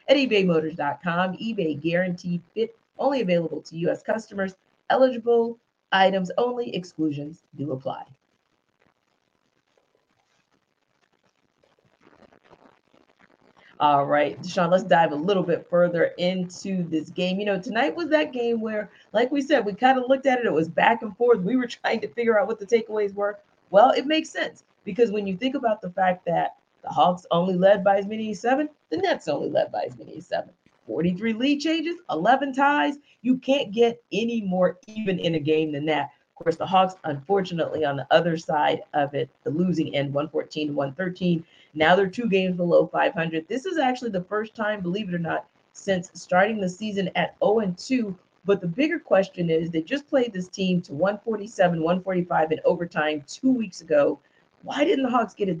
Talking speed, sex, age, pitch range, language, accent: 180 wpm, female, 40-59, 170-230 Hz, English, American